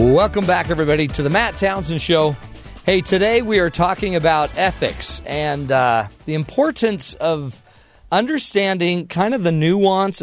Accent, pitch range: American, 115-160 Hz